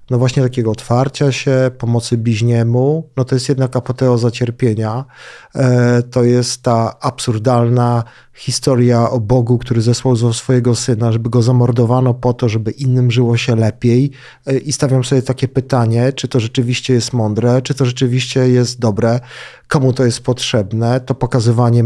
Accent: native